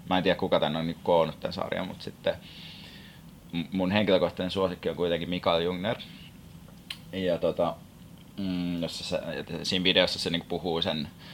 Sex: male